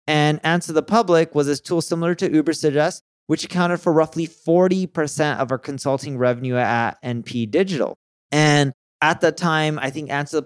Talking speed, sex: 180 wpm, male